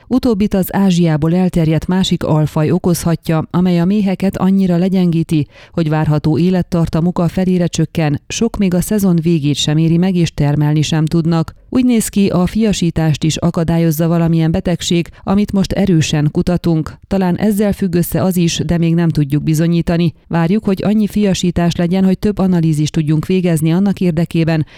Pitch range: 160-185 Hz